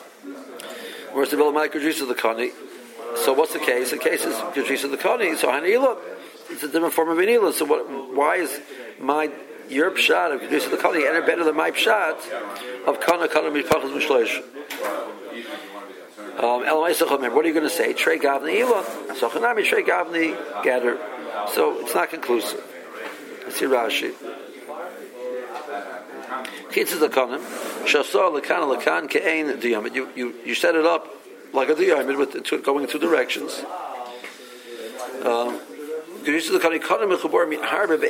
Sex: male